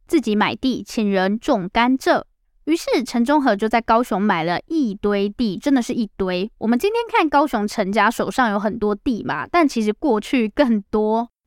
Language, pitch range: Chinese, 215-275 Hz